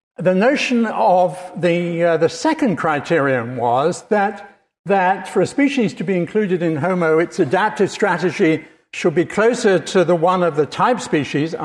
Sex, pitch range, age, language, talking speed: male, 155-200 Hz, 60-79, English, 165 wpm